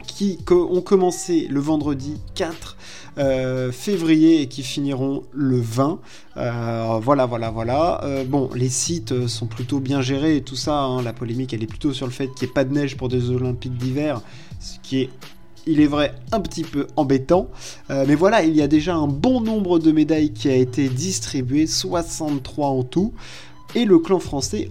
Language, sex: French, male